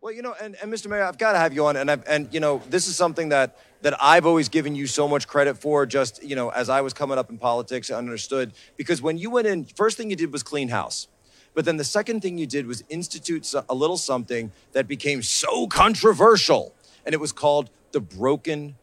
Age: 30-49